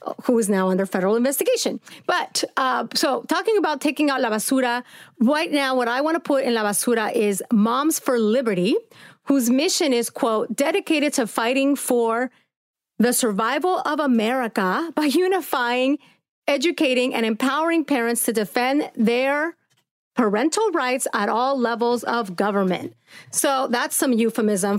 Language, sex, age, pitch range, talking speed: English, female, 30-49, 225-300 Hz, 150 wpm